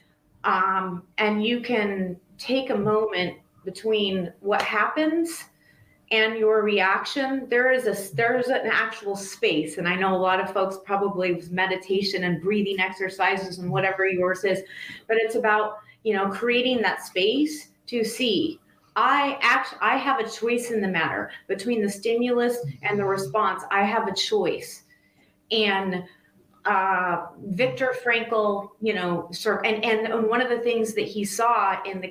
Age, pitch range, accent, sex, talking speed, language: 30-49, 190-225 Hz, American, female, 155 wpm, English